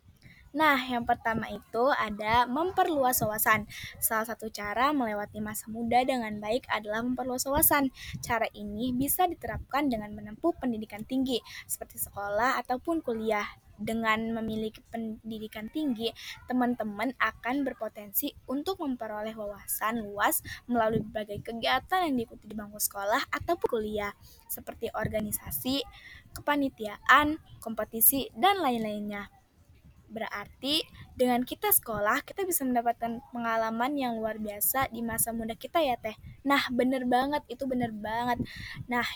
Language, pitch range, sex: Indonesian, 220-265 Hz, female